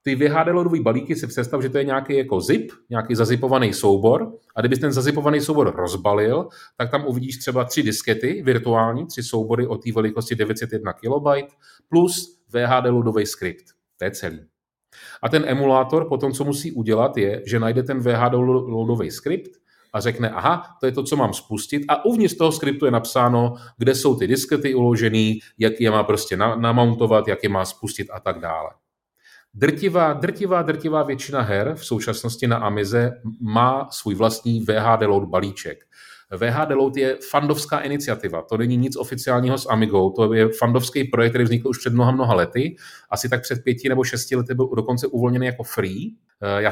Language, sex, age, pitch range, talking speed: Czech, male, 30-49, 110-135 Hz, 180 wpm